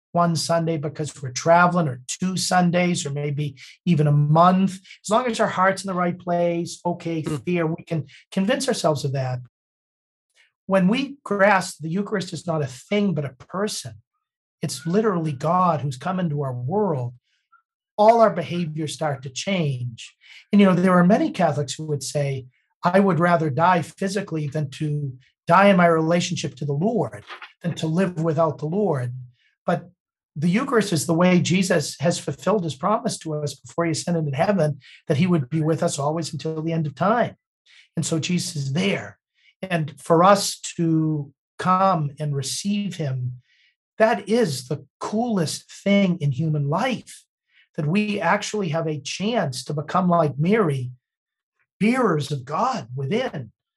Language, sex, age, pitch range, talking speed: English, male, 50-69, 150-190 Hz, 170 wpm